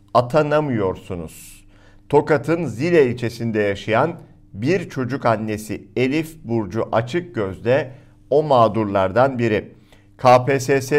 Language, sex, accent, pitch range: Turkish, male, native, 100-140 Hz